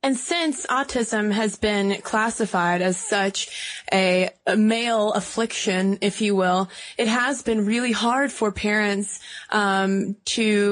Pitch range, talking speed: 195-235 Hz, 135 wpm